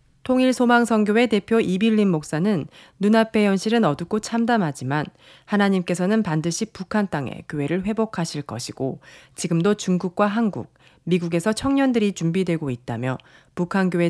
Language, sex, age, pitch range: Korean, female, 40-59, 155-215 Hz